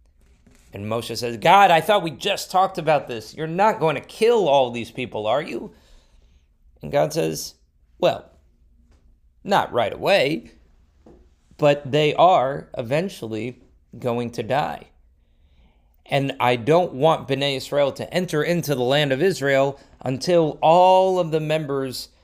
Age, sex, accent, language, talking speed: 30-49, male, American, English, 145 wpm